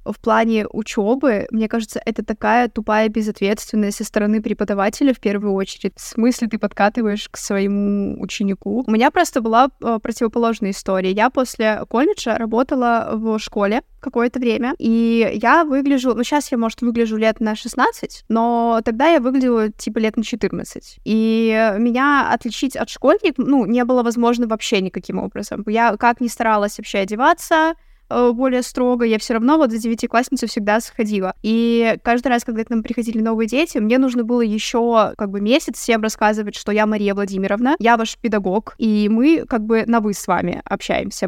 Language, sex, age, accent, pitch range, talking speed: Russian, female, 20-39, native, 215-240 Hz, 170 wpm